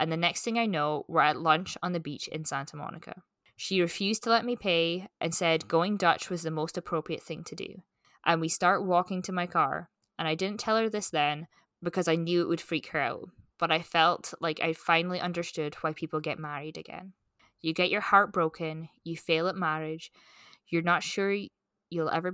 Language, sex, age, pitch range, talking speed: English, female, 20-39, 160-185 Hz, 215 wpm